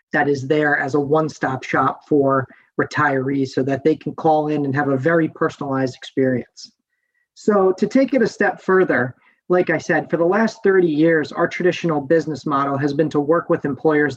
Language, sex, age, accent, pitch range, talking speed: English, male, 30-49, American, 145-175 Hz, 195 wpm